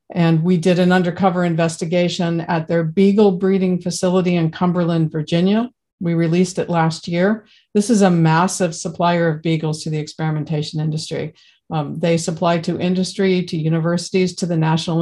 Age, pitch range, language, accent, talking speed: 50-69, 170-195 Hz, English, American, 160 wpm